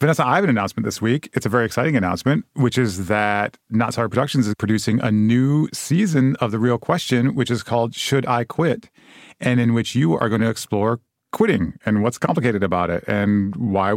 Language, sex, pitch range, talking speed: English, male, 105-130 Hz, 210 wpm